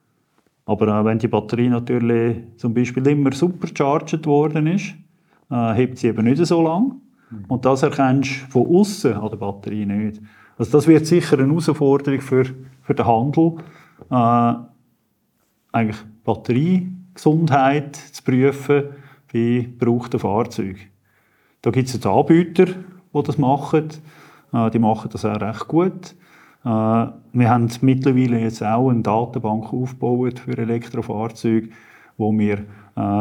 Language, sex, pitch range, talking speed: German, male, 115-145 Hz, 130 wpm